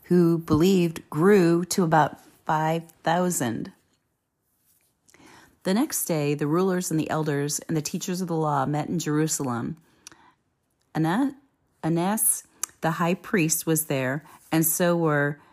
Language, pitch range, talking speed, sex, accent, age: English, 155-195 Hz, 130 wpm, female, American, 40-59